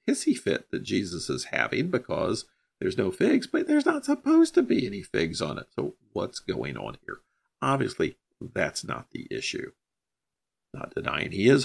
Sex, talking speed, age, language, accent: male, 175 wpm, 50-69, English, American